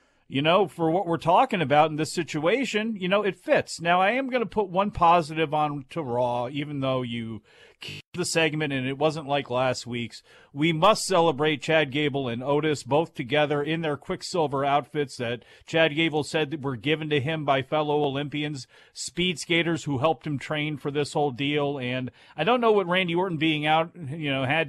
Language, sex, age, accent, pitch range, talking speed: English, male, 40-59, American, 135-165 Hz, 200 wpm